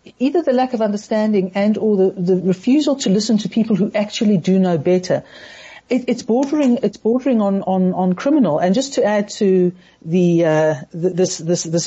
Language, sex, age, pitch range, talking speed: English, female, 60-79, 175-210 Hz, 195 wpm